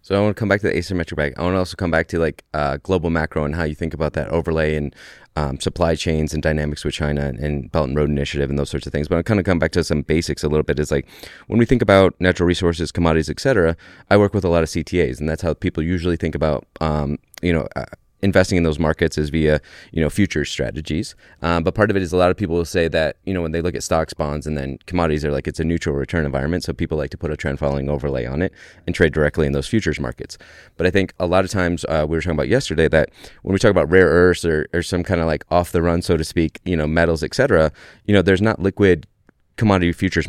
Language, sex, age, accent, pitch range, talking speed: English, male, 20-39, American, 75-90 Hz, 285 wpm